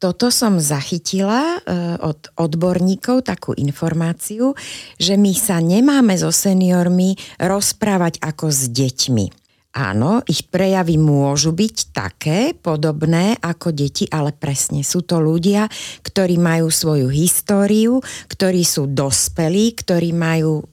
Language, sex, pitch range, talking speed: Slovak, female, 160-195 Hz, 115 wpm